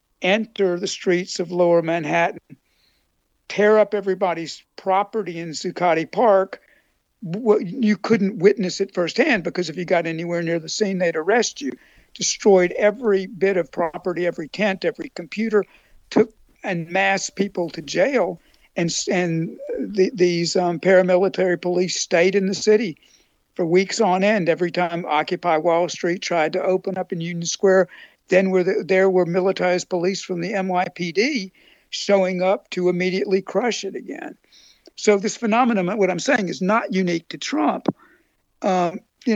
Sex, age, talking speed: male, 60-79, 155 wpm